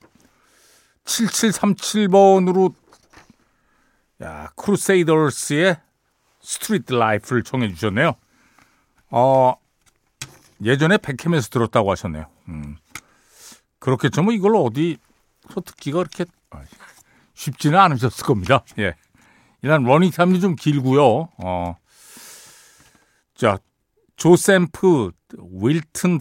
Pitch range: 120-180 Hz